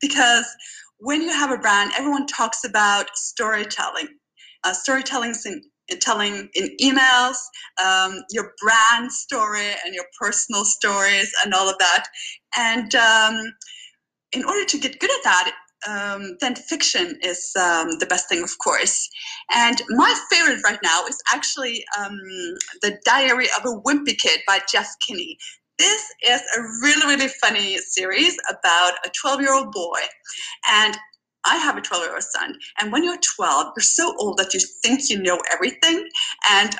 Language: English